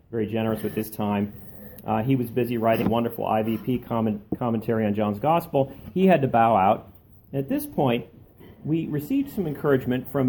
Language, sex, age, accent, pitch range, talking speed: English, male, 40-59, American, 110-140 Hz, 175 wpm